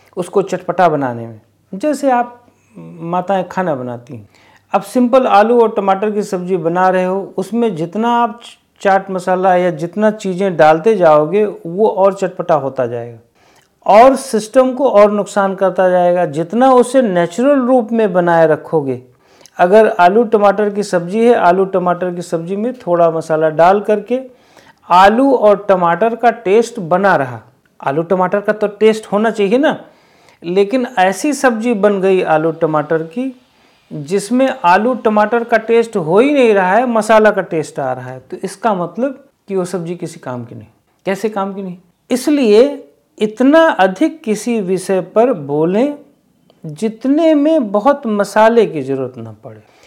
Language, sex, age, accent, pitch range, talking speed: Hindi, male, 50-69, native, 165-230 Hz, 160 wpm